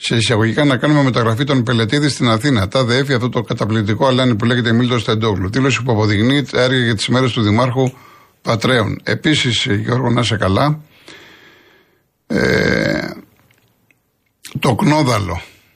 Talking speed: 140 wpm